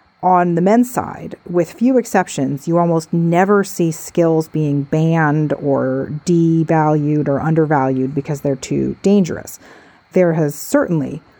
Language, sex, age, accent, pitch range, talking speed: English, female, 40-59, American, 150-190 Hz, 130 wpm